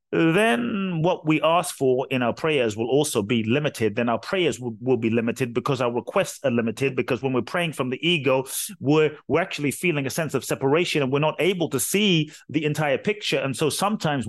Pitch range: 135-175 Hz